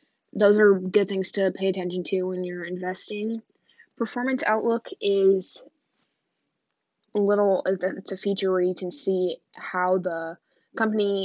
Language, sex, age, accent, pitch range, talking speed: English, female, 10-29, American, 180-205 Hz, 140 wpm